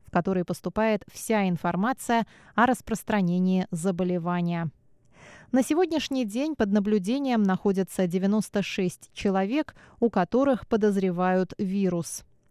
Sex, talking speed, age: female, 95 wpm, 20-39